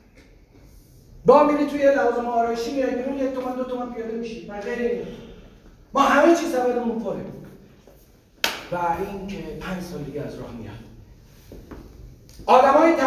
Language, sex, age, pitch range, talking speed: Persian, male, 40-59, 165-255 Hz, 105 wpm